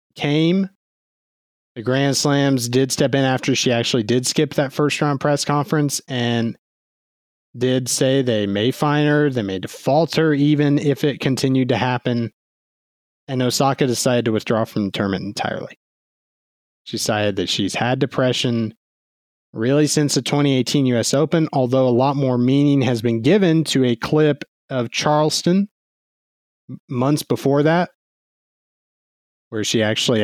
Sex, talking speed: male, 145 wpm